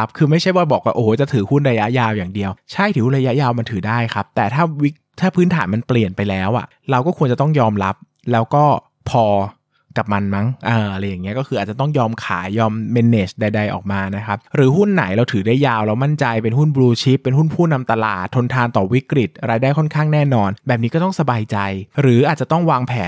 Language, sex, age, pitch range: Thai, male, 20-39, 110-140 Hz